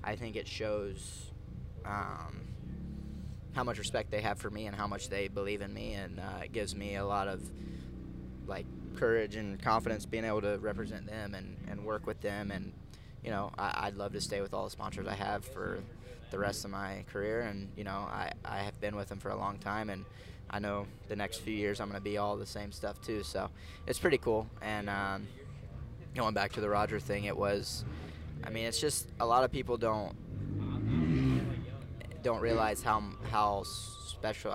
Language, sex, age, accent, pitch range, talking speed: English, male, 20-39, American, 95-110 Hz, 205 wpm